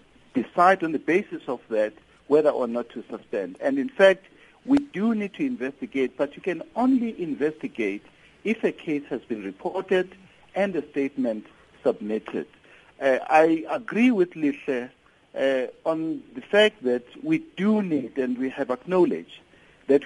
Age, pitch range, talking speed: 60-79, 145-215 Hz, 155 wpm